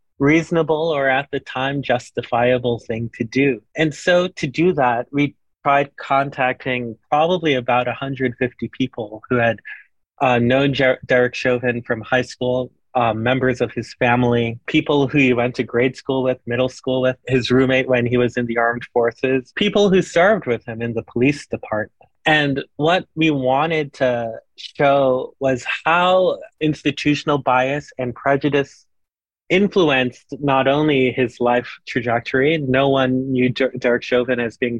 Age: 30-49